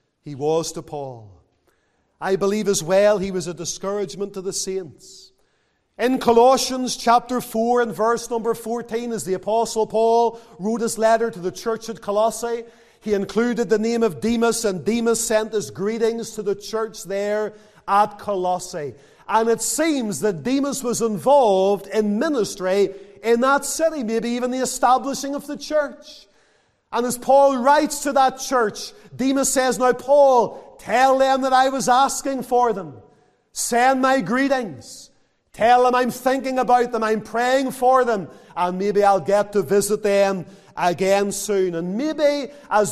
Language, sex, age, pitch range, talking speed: English, male, 40-59, 205-255 Hz, 160 wpm